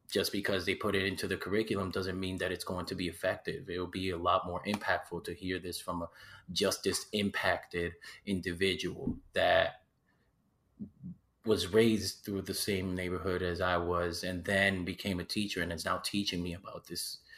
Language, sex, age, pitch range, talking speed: English, male, 30-49, 90-100 Hz, 185 wpm